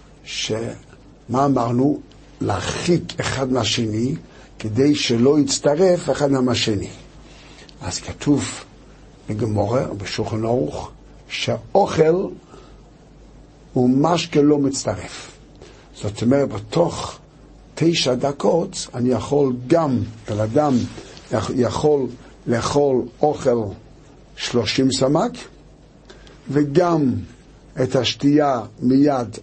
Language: Hebrew